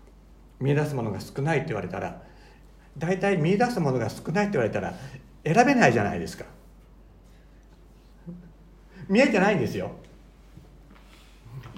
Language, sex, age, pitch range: Japanese, male, 60-79, 140-205 Hz